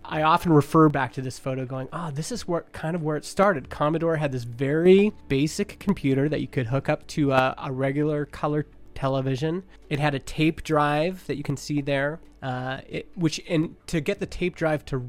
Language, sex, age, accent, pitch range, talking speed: English, male, 30-49, American, 135-165 Hz, 205 wpm